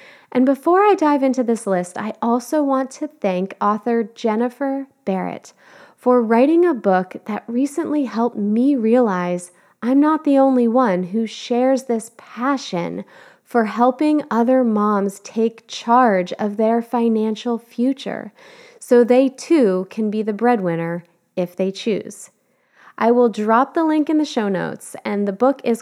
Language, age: English, 20-39